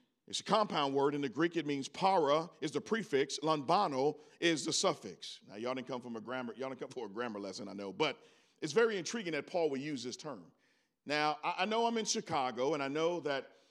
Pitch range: 160-230 Hz